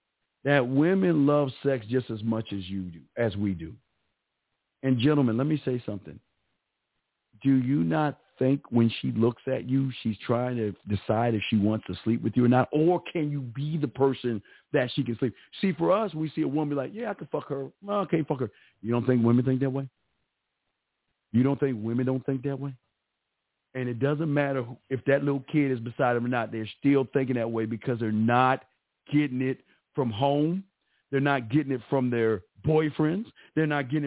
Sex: male